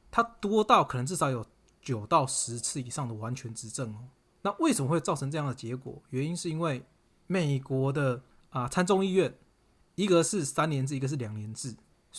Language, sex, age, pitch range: Chinese, male, 20-39, 125-165 Hz